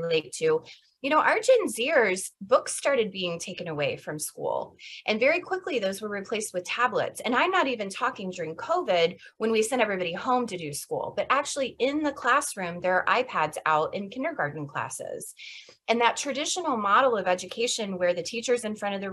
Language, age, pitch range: English, 20-39, 185-250 Hz